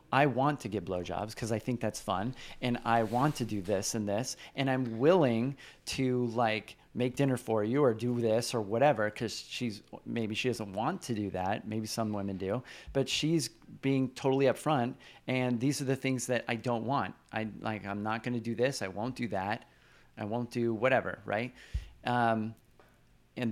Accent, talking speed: American, 200 wpm